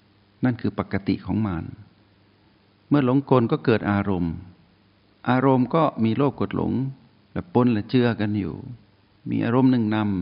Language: Thai